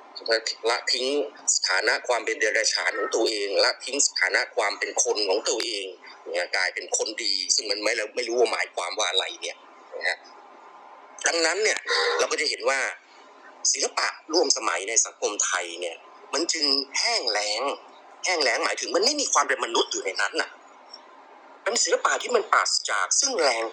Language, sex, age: Thai, male, 30-49